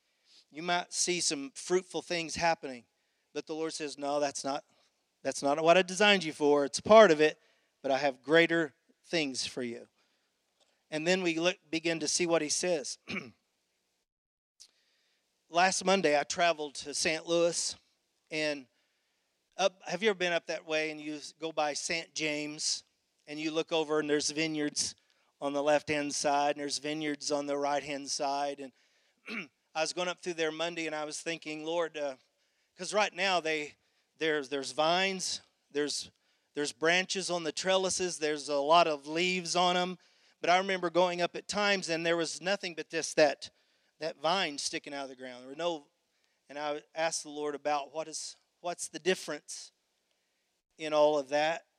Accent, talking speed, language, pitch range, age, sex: American, 180 wpm, English, 145-170 Hz, 40-59, male